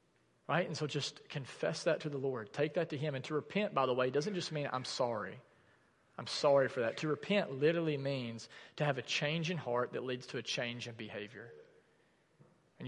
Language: English